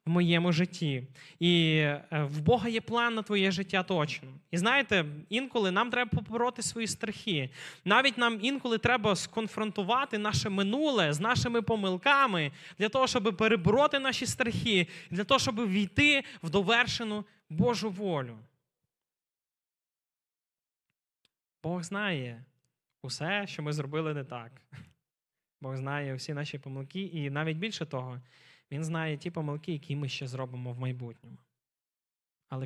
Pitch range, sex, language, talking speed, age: 140-200 Hz, male, Ukrainian, 130 wpm, 20-39